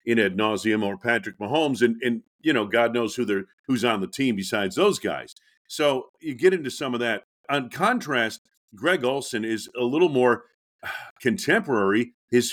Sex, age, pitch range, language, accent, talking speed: male, 50-69, 110-145 Hz, English, American, 180 wpm